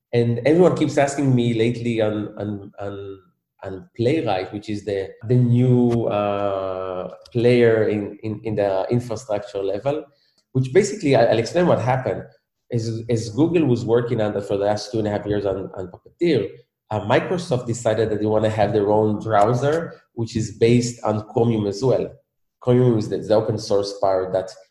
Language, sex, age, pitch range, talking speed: English, male, 20-39, 105-125 Hz, 175 wpm